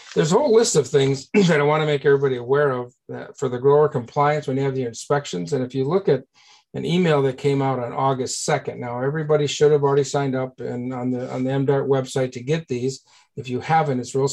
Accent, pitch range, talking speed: American, 125-145 Hz, 245 wpm